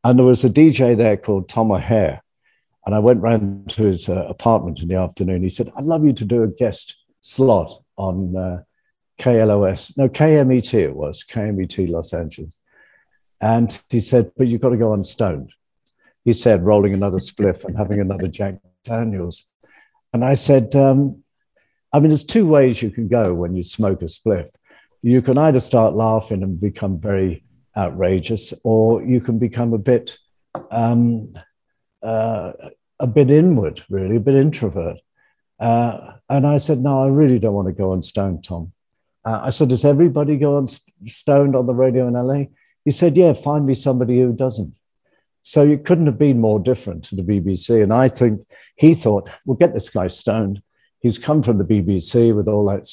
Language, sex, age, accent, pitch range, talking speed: English, male, 60-79, British, 100-130 Hz, 185 wpm